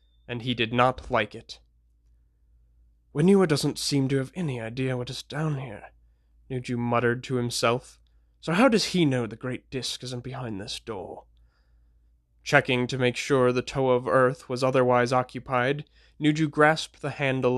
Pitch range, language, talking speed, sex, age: 110-135 Hz, English, 165 wpm, male, 20-39